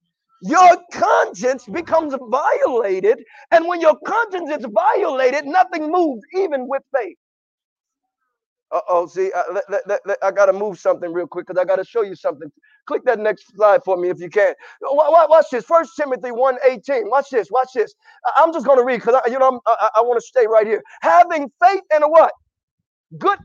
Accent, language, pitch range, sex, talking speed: American, English, 235-345 Hz, male, 185 wpm